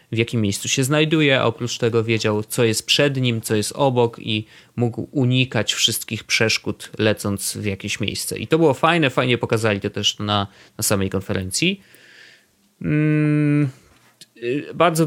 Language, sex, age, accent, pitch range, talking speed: Polish, male, 20-39, native, 110-145 Hz, 150 wpm